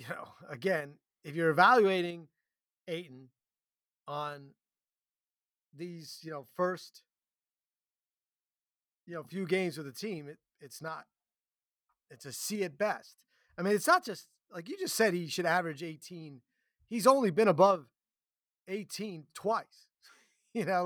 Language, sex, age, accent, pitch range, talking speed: English, male, 30-49, American, 155-195 Hz, 140 wpm